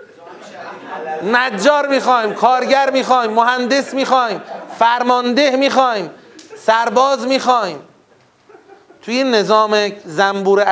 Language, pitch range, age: Persian, 150-225 Hz, 30-49